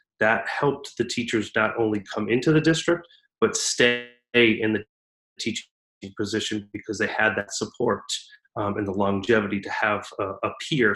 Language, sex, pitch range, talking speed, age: English, male, 105-130 Hz, 165 wpm, 30-49